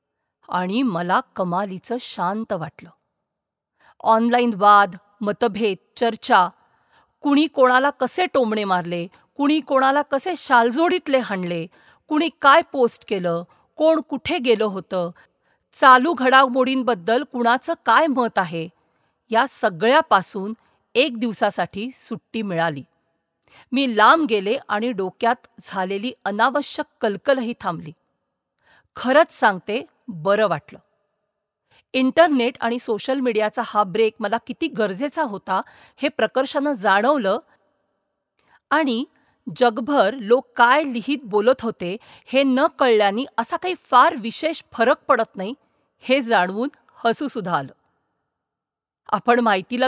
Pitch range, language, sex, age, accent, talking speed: 210-275 Hz, Marathi, female, 50-69, native, 95 wpm